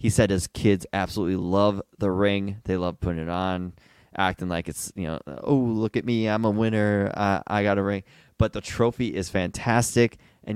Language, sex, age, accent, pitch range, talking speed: English, male, 20-39, American, 95-115 Hz, 205 wpm